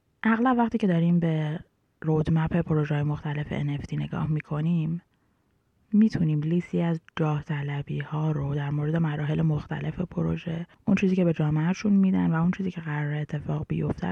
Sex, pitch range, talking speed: female, 150-175 Hz, 155 wpm